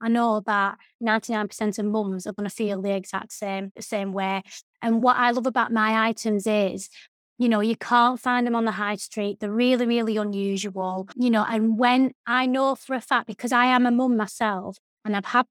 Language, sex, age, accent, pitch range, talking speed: English, female, 20-39, British, 205-250 Hz, 215 wpm